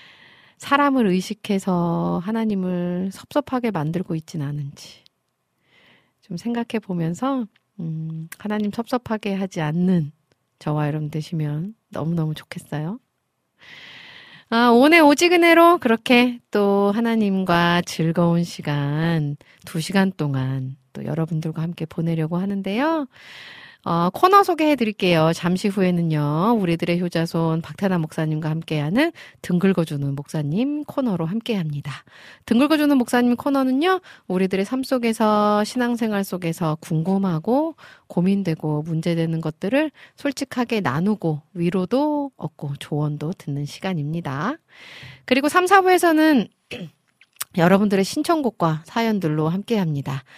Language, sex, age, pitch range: Korean, female, 40-59, 160-240 Hz